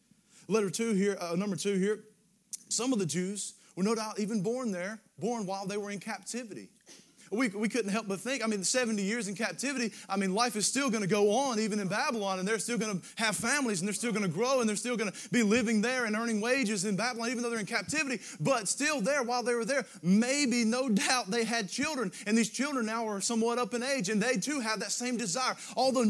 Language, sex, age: English, male, 30-49